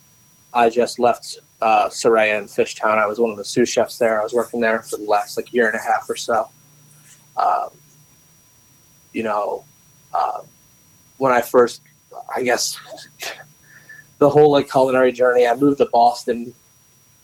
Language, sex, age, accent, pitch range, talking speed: English, male, 30-49, American, 115-140 Hz, 165 wpm